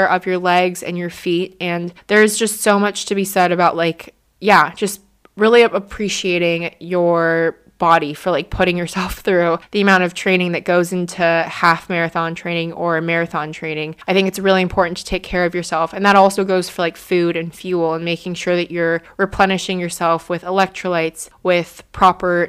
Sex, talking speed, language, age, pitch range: female, 185 wpm, English, 20-39, 175-200 Hz